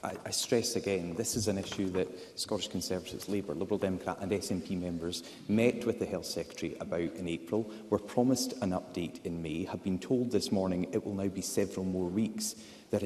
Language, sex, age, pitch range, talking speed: English, male, 30-49, 95-115 Hz, 200 wpm